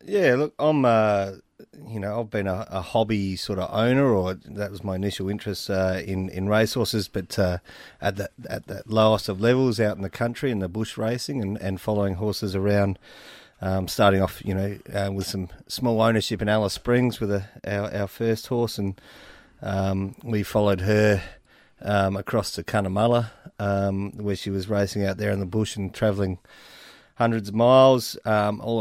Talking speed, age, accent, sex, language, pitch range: 190 wpm, 30-49, Australian, male, English, 100-115 Hz